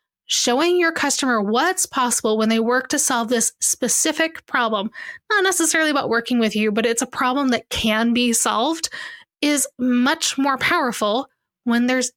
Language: English